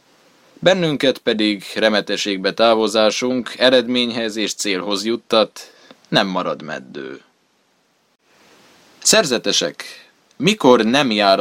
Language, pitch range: Hungarian, 100-125 Hz